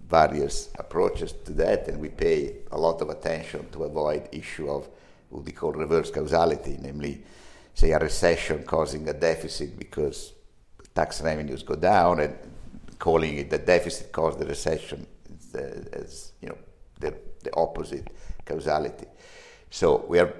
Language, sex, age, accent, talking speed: English, male, 60-79, Italian, 150 wpm